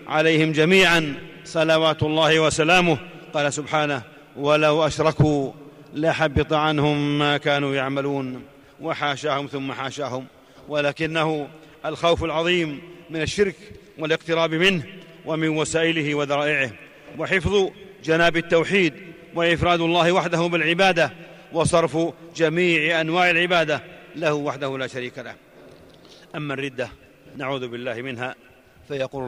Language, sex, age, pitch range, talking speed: Arabic, male, 40-59, 140-165 Hz, 100 wpm